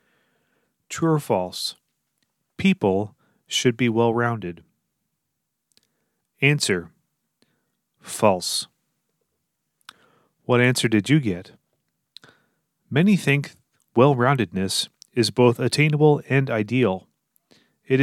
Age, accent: 30-49, American